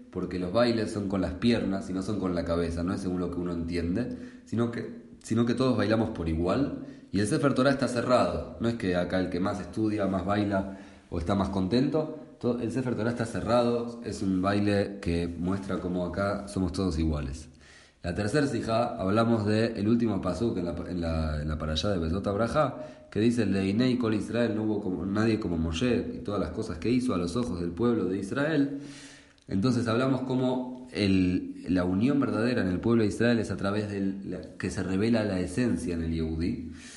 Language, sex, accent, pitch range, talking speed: English, male, Argentinian, 85-115 Hz, 215 wpm